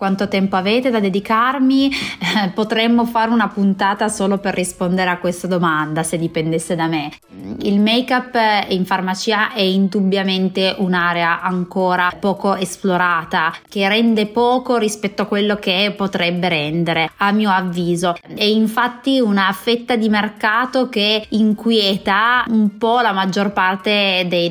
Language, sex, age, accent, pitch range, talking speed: Italian, female, 20-39, native, 185-215 Hz, 140 wpm